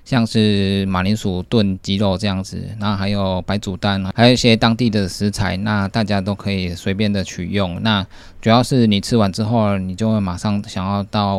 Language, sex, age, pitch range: Chinese, male, 20-39, 95-110 Hz